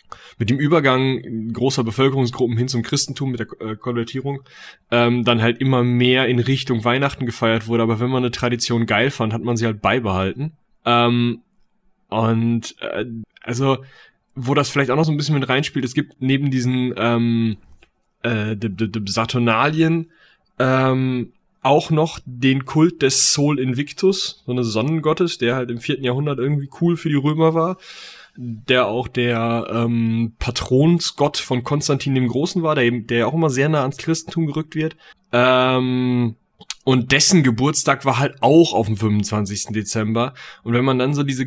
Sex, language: male, German